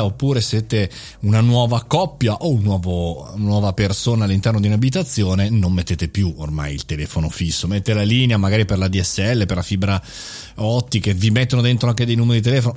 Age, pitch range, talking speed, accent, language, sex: 30-49, 100-135 Hz, 180 wpm, native, Italian, male